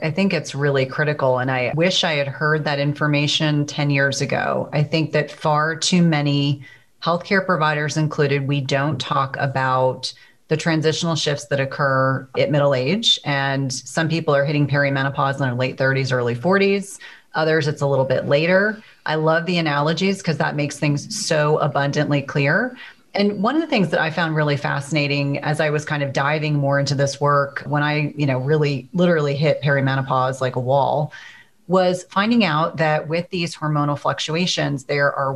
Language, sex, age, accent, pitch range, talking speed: English, female, 30-49, American, 140-160 Hz, 180 wpm